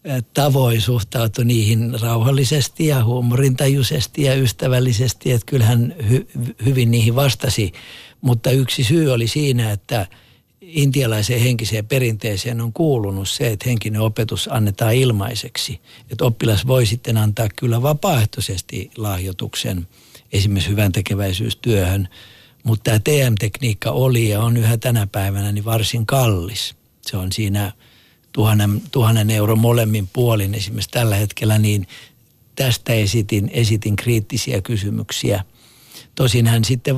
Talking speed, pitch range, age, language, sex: 115 wpm, 110-125 Hz, 50-69, Finnish, male